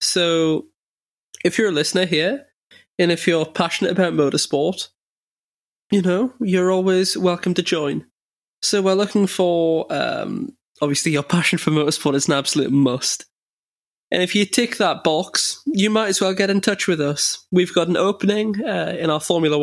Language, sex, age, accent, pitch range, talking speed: English, male, 20-39, British, 150-190 Hz, 170 wpm